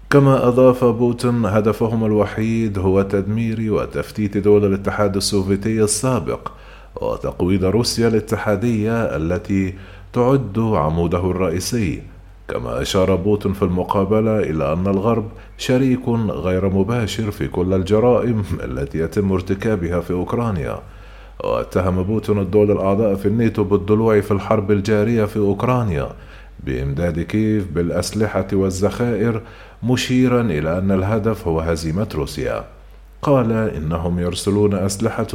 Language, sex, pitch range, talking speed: Arabic, male, 95-110 Hz, 110 wpm